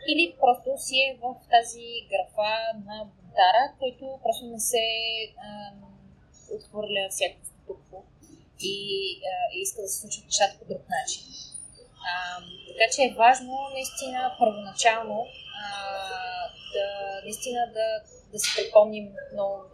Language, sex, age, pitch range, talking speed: Bulgarian, female, 20-39, 205-265 Hz, 125 wpm